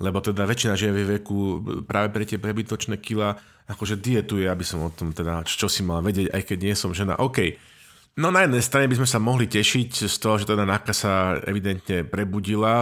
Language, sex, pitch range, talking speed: Slovak, male, 95-110 Hz, 220 wpm